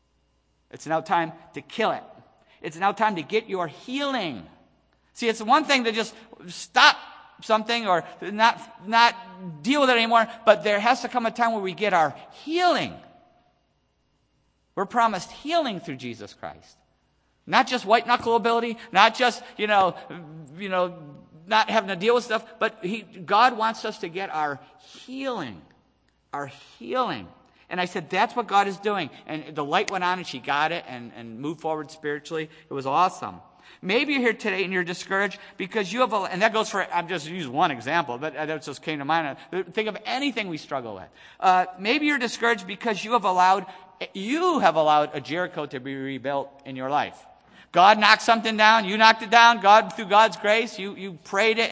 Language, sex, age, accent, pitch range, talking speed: English, male, 50-69, American, 165-225 Hz, 195 wpm